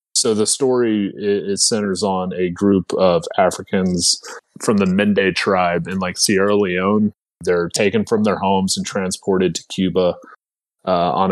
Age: 30-49